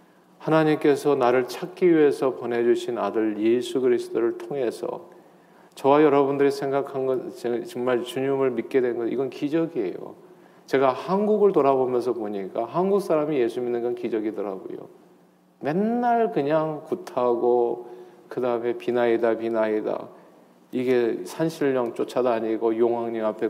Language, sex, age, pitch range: Korean, male, 40-59, 125-175 Hz